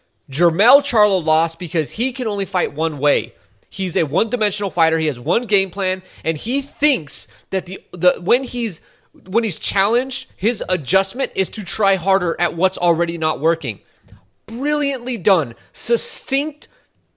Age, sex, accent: 30-49, male, American